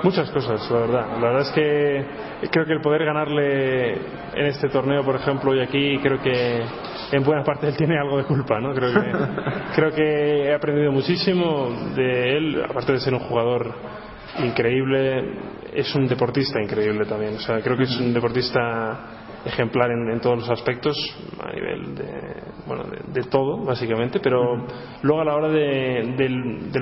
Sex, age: male, 20-39